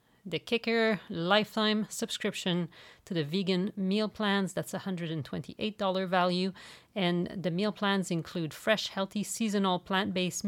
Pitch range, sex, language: 165-205 Hz, female, English